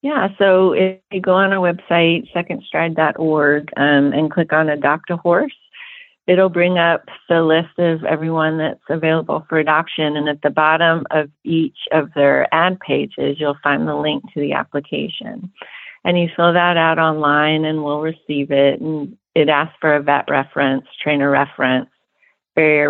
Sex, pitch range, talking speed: female, 145-170 Hz, 165 wpm